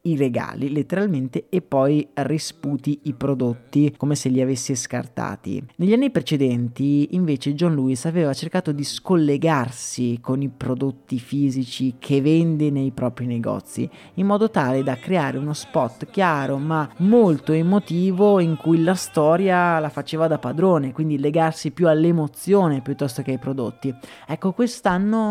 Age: 30-49